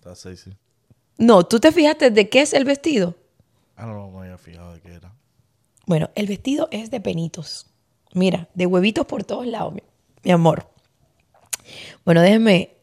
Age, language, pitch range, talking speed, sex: 20-39, Spanish, 145-205 Hz, 155 wpm, female